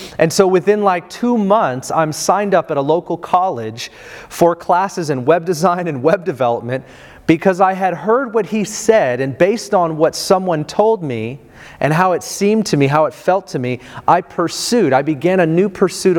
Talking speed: 195 wpm